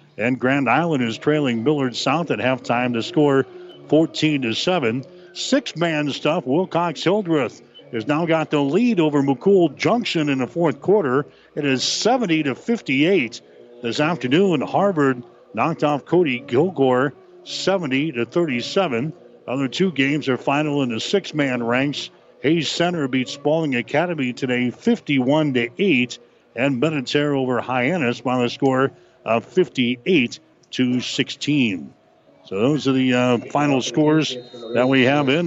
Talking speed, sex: 135 wpm, male